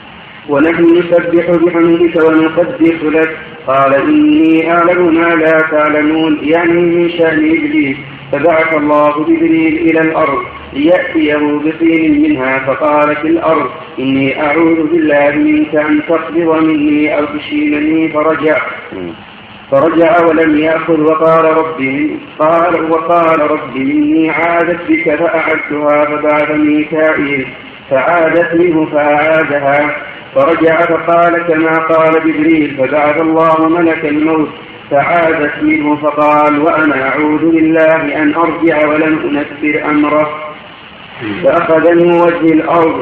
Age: 50-69